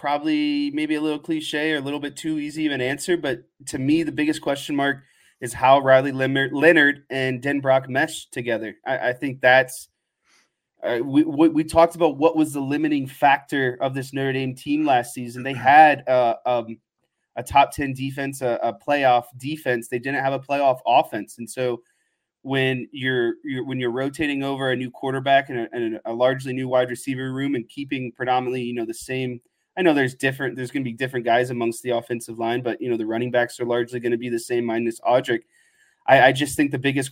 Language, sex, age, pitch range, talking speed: English, male, 20-39, 125-145 Hz, 215 wpm